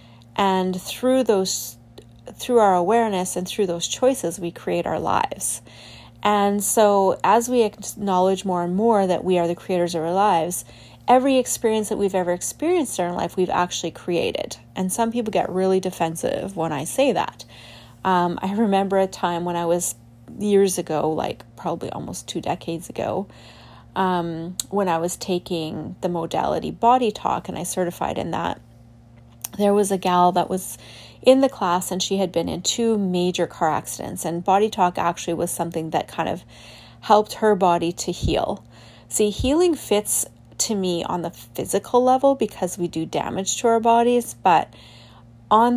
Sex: female